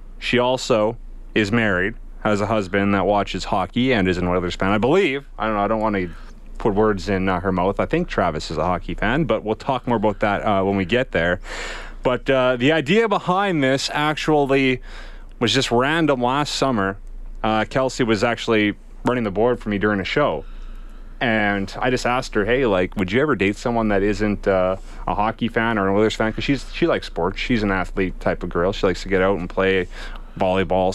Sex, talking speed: male, 215 wpm